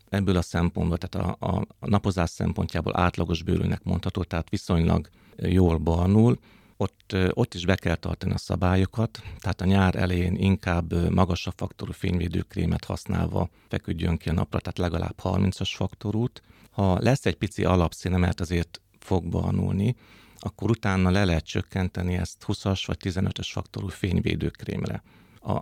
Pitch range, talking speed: 90-105 Hz, 145 wpm